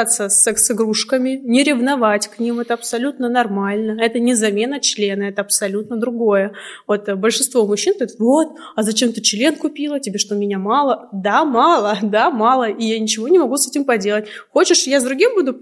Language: Russian